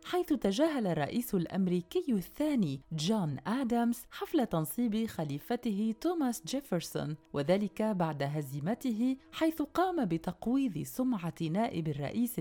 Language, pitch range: Arabic, 180-265 Hz